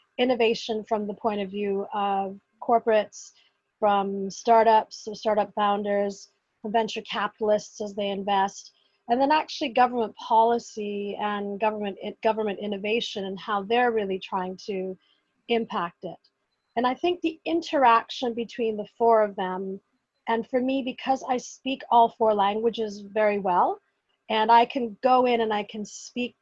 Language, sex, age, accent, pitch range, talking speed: English, female, 40-59, American, 200-230 Hz, 145 wpm